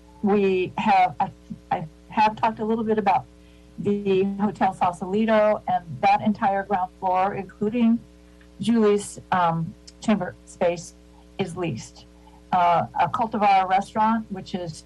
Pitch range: 160-200 Hz